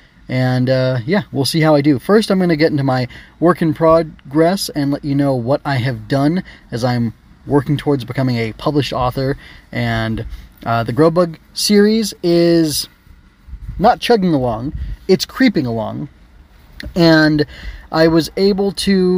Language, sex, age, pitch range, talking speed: English, male, 20-39, 120-160 Hz, 165 wpm